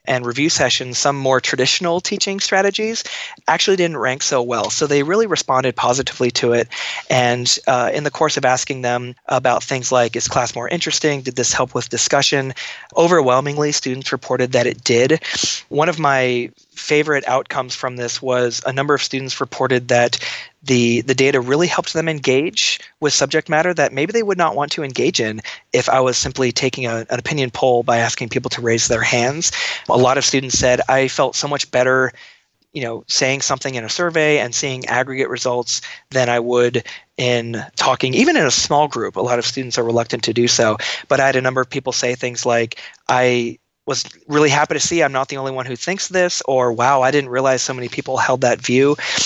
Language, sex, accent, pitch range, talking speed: English, male, American, 125-145 Hz, 205 wpm